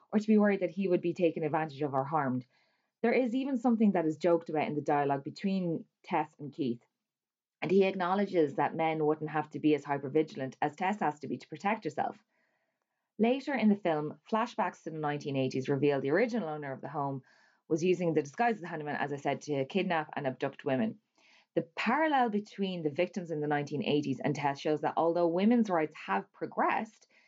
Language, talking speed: English, 205 wpm